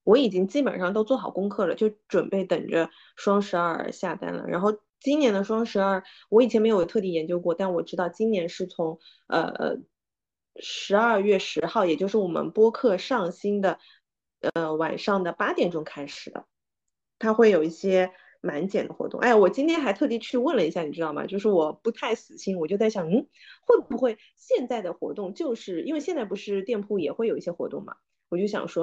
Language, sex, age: Chinese, female, 20-39